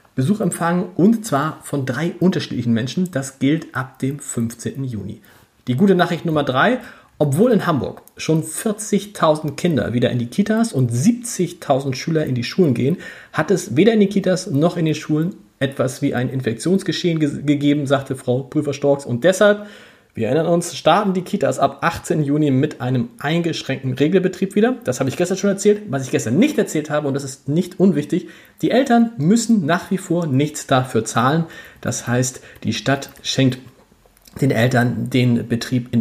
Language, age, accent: German, 40-59, German